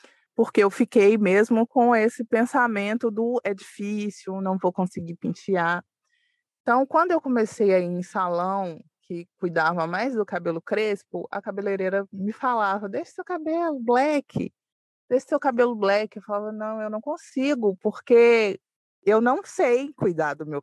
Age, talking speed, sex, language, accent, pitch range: 20-39, 155 wpm, female, Portuguese, Brazilian, 180-240 Hz